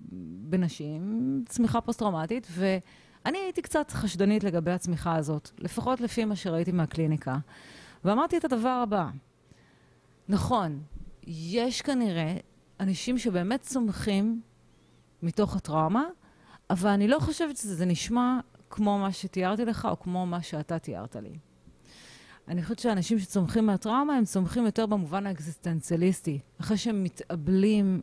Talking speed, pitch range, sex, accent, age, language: 120 wpm, 165-220 Hz, female, native, 30-49, Hebrew